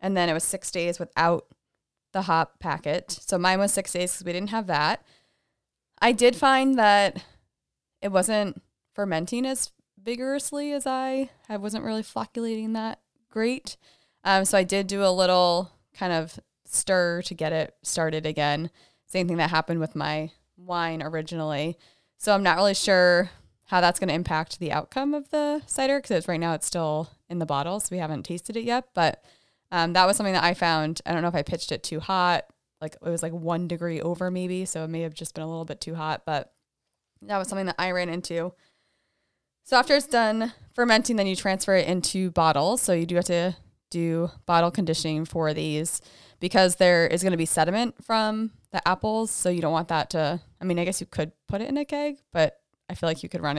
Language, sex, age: English, female, 20-39